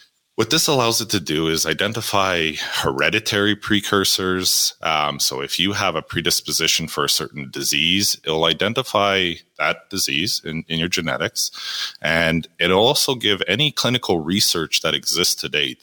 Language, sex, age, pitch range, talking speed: English, male, 30-49, 80-105 Hz, 150 wpm